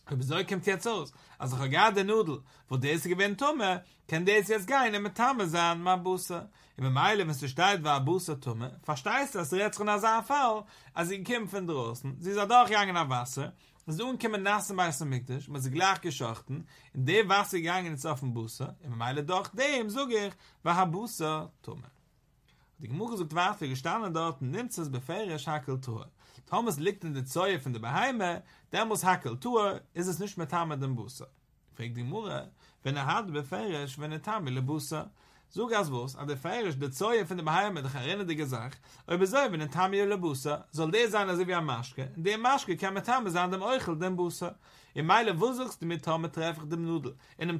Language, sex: English, male